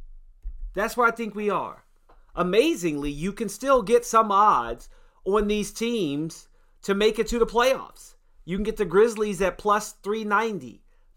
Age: 30-49